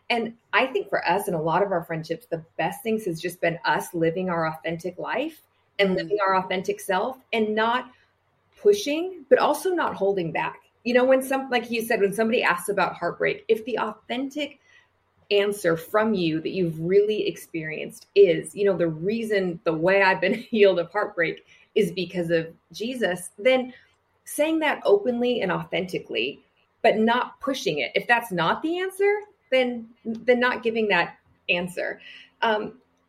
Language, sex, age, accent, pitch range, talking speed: English, female, 30-49, American, 170-245 Hz, 170 wpm